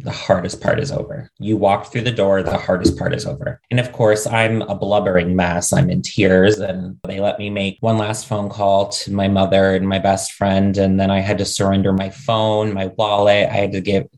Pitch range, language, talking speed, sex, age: 95-105 Hz, English, 235 wpm, male, 20-39